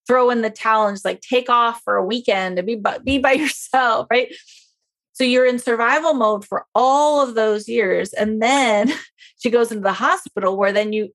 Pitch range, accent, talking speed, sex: 195-260 Hz, American, 210 wpm, female